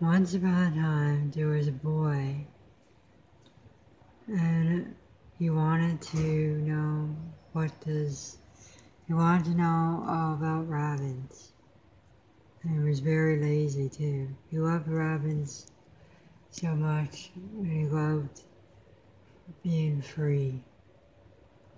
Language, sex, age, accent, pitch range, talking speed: English, female, 60-79, American, 115-160 Hz, 105 wpm